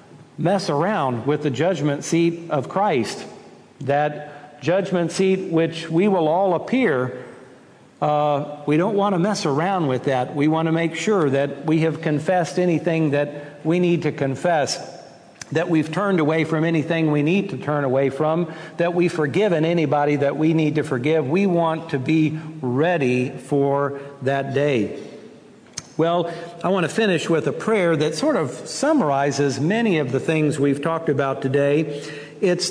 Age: 60-79